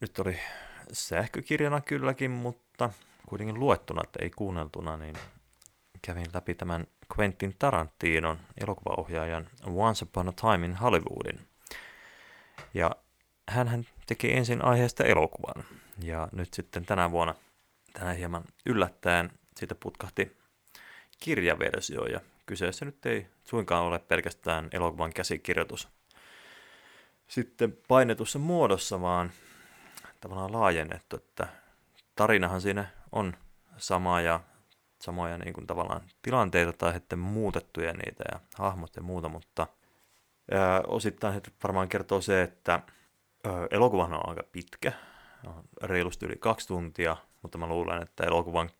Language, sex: Finnish, male